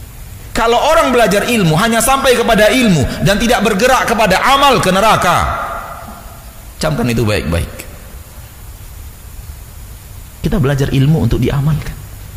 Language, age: Indonesian, 40-59